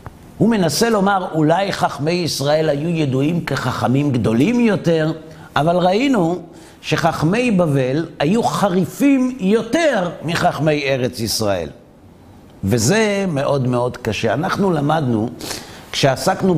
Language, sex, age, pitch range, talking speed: Hebrew, male, 50-69, 140-195 Hz, 100 wpm